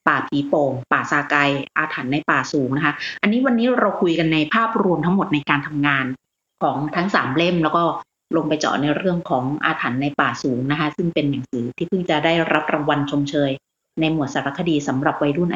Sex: female